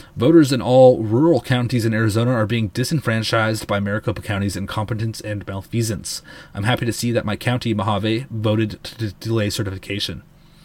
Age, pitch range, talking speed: 30-49, 105-150 Hz, 165 wpm